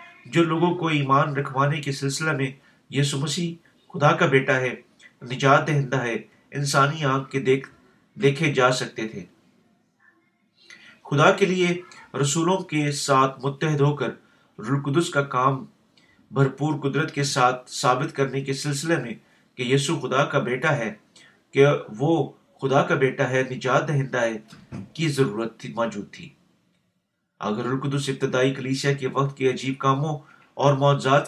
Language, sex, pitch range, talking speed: Urdu, male, 130-150 Hz, 150 wpm